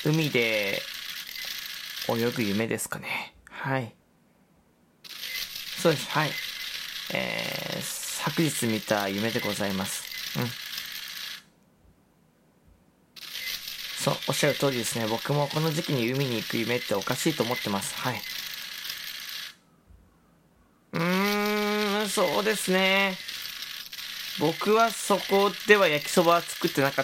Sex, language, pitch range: male, Japanese, 120-170 Hz